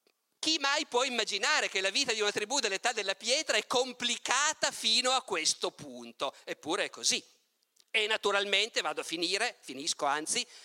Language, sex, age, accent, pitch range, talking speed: Italian, male, 50-69, native, 190-270 Hz, 165 wpm